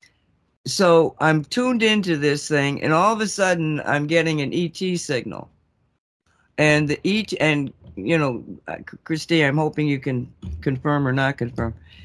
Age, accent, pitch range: 60-79, American, 140-170 Hz